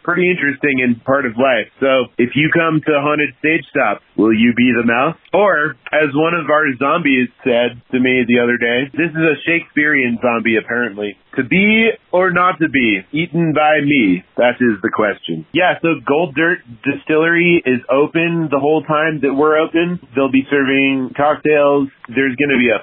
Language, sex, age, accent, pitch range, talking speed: English, male, 30-49, American, 125-155 Hz, 190 wpm